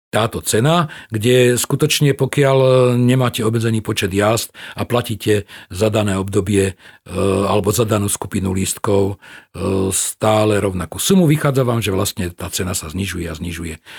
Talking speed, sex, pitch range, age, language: 135 wpm, male, 100-130 Hz, 40-59, Slovak